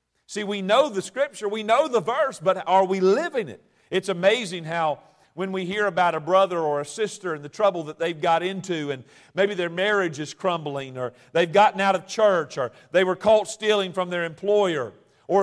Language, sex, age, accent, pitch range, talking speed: English, male, 50-69, American, 180-235 Hz, 210 wpm